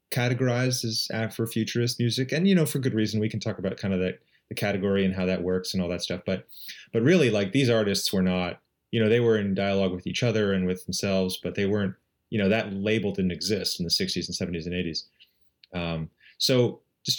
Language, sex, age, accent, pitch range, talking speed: English, male, 30-49, American, 90-115 Hz, 230 wpm